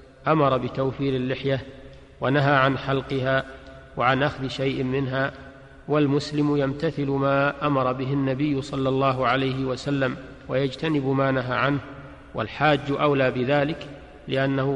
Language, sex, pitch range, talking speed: Arabic, male, 130-145 Hz, 115 wpm